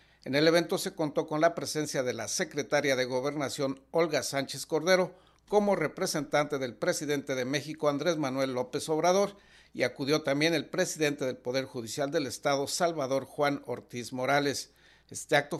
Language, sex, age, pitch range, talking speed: Spanish, male, 50-69, 135-165 Hz, 160 wpm